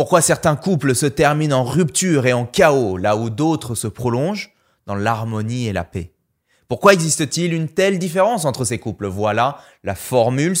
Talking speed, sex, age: 175 wpm, male, 20-39